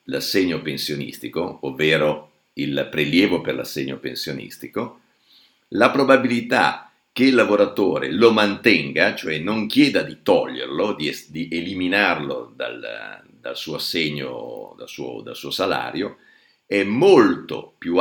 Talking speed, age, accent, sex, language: 120 wpm, 50-69, native, male, Italian